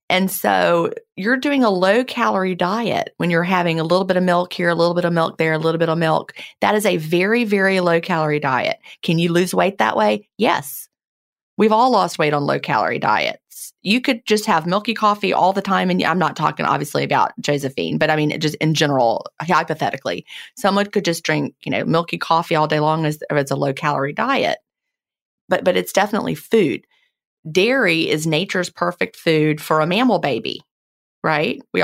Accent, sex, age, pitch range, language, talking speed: American, female, 30-49, 155-215 Hz, English, 200 wpm